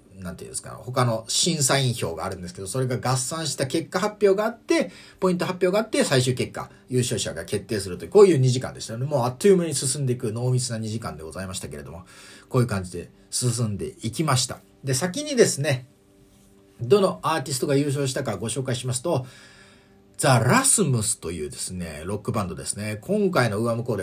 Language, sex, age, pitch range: Japanese, male, 40-59, 100-165 Hz